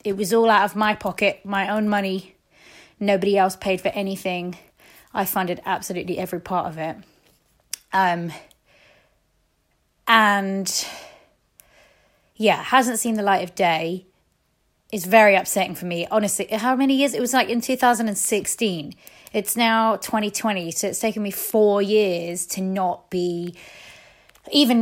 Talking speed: 140 wpm